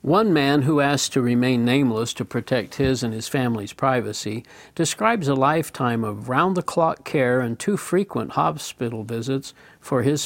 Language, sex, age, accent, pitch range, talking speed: English, male, 60-79, American, 125-150 Hz, 160 wpm